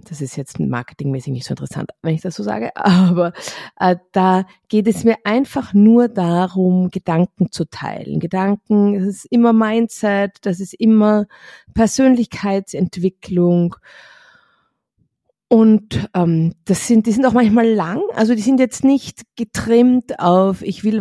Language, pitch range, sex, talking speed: German, 170-230 Hz, female, 145 wpm